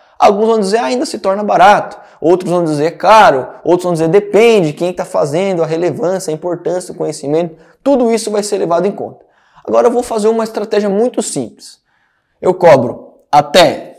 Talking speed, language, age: 185 wpm, Portuguese, 20-39